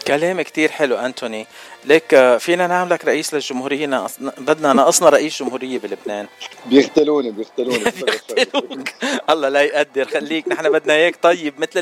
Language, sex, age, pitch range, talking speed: Arabic, male, 50-69, 130-175 Hz, 130 wpm